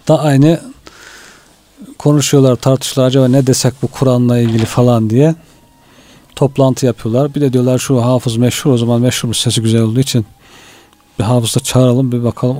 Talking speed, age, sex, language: 150 wpm, 40-59, male, Turkish